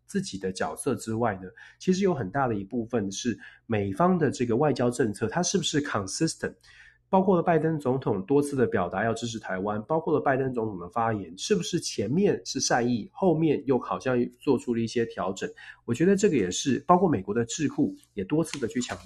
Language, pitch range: Chinese, 110-160 Hz